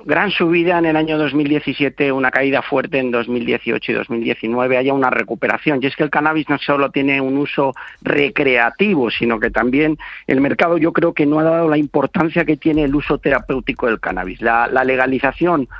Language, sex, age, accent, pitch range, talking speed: Spanish, male, 50-69, Spanish, 130-160 Hz, 190 wpm